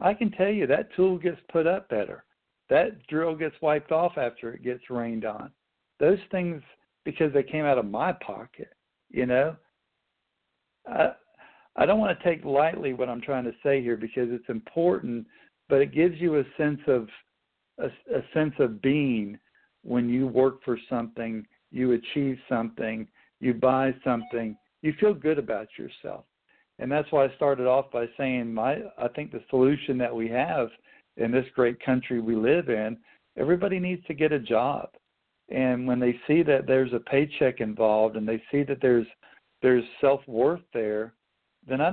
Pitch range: 120-155 Hz